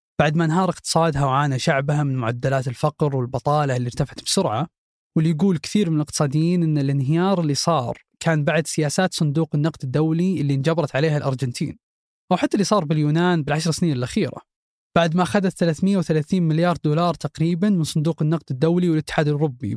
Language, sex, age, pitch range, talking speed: Arabic, male, 20-39, 145-180 Hz, 160 wpm